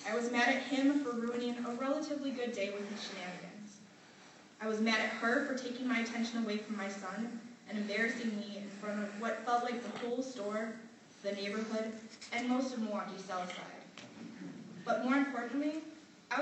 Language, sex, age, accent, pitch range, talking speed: English, female, 20-39, American, 205-250 Hz, 185 wpm